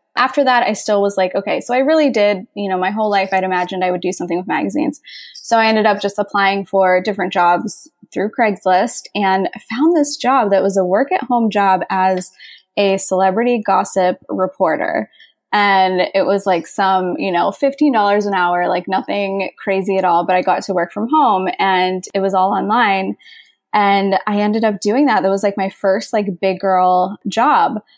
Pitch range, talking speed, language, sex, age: 190-220 Hz, 200 wpm, English, female, 20-39